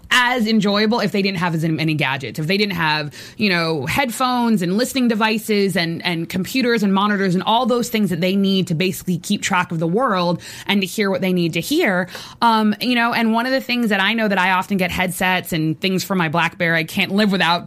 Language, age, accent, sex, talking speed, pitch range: English, 20-39, American, female, 240 wpm, 180-230 Hz